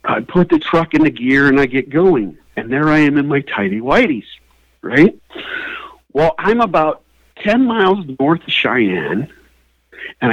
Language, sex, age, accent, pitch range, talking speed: English, male, 50-69, American, 120-190 Hz, 170 wpm